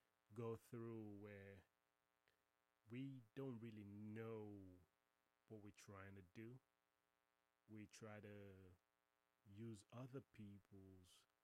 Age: 30-49